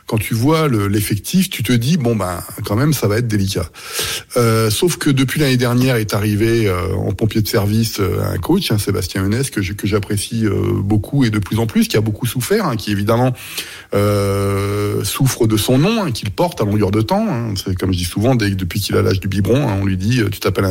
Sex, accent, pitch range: male, French, 105-130 Hz